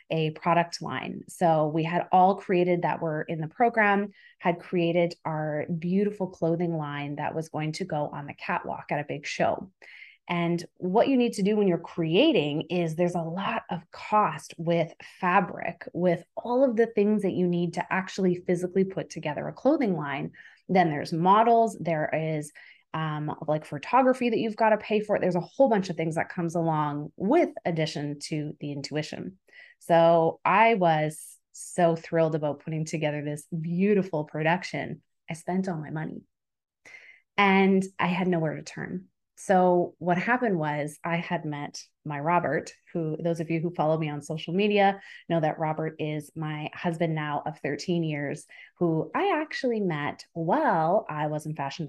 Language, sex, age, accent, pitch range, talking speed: English, female, 20-39, American, 155-190 Hz, 175 wpm